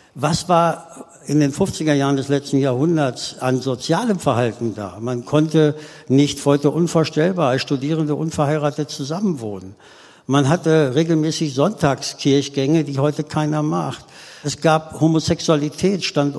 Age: 60-79